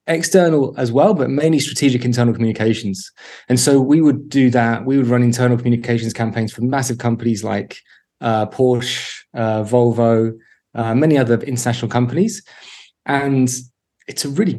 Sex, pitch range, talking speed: male, 120-140 Hz, 150 wpm